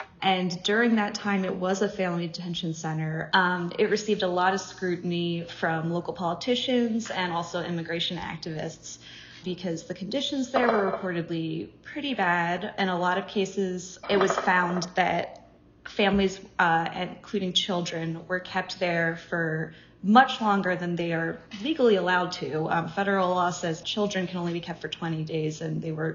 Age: 20-39